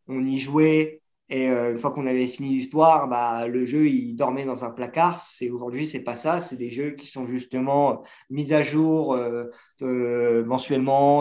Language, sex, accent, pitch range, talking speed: French, male, French, 125-150 Hz, 185 wpm